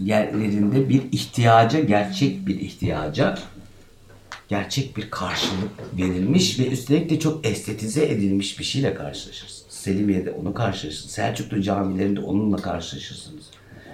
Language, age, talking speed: Turkish, 60-79, 110 wpm